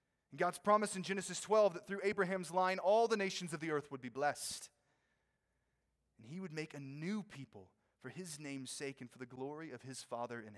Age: 30-49